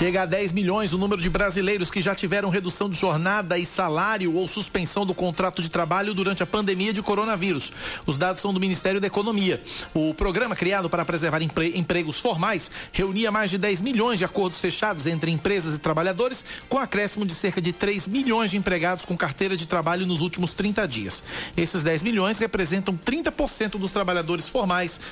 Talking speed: 185 wpm